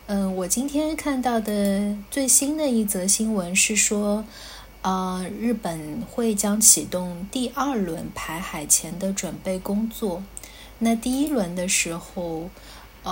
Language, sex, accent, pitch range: Chinese, female, native, 180-220 Hz